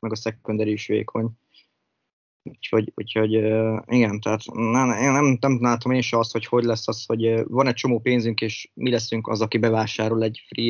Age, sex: 20-39, male